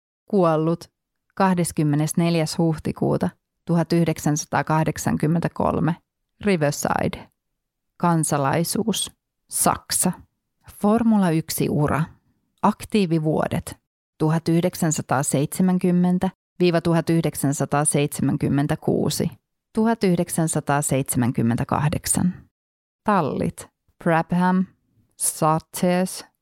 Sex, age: female, 30-49